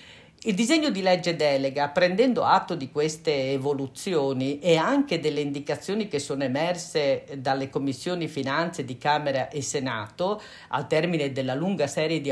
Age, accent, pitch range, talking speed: 50-69, native, 140-185 Hz, 145 wpm